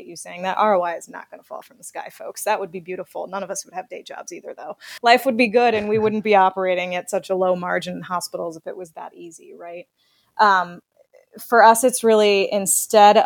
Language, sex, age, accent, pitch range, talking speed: English, female, 20-39, American, 175-205 Hz, 245 wpm